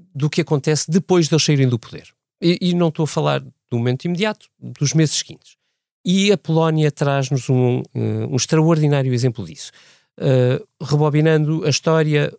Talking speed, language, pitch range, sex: 160 wpm, Portuguese, 115-155 Hz, male